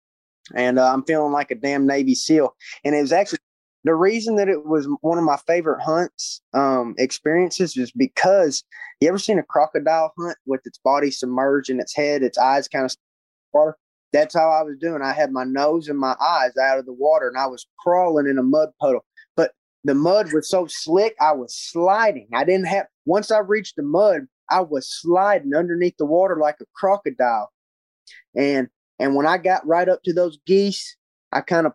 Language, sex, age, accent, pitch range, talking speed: English, male, 20-39, American, 135-185 Hz, 205 wpm